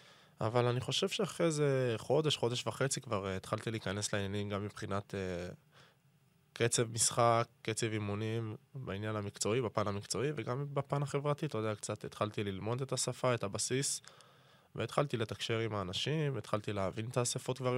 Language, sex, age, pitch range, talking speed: Hebrew, male, 20-39, 105-140 Hz, 150 wpm